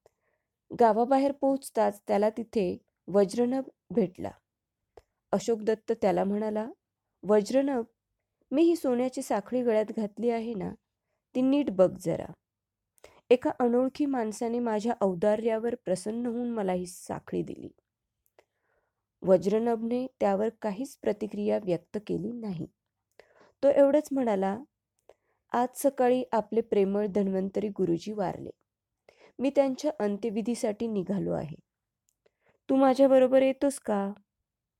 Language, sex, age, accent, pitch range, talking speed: Marathi, female, 20-39, native, 200-255 Hz, 105 wpm